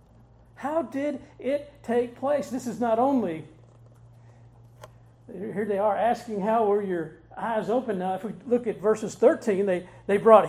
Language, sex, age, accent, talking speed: English, male, 50-69, American, 160 wpm